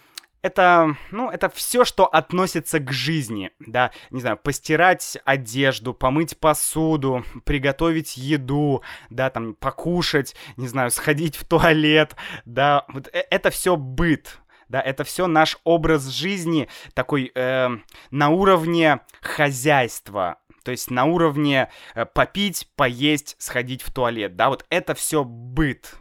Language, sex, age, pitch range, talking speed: Russian, male, 20-39, 135-180 Hz, 125 wpm